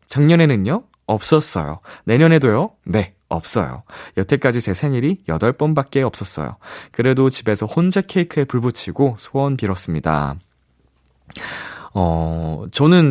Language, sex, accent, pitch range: Korean, male, native, 100-165 Hz